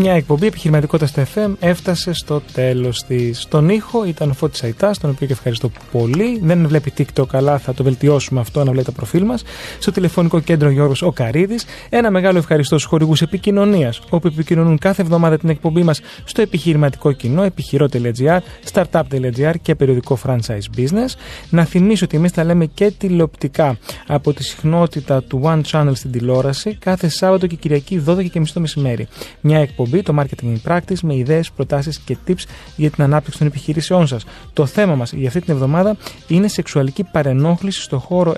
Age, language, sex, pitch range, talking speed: 30-49, Greek, male, 135-175 Hz, 170 wpm